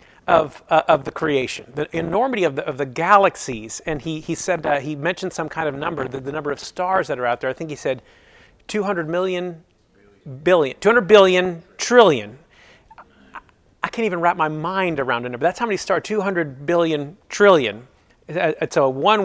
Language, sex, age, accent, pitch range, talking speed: English, male, 40-59, American, 155-205 Hz, 195 wpm